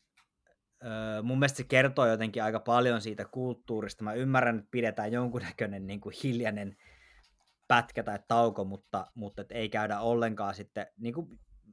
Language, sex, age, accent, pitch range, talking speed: Finnish, male, 20-39, native, 110-130 Hz, 135 wpm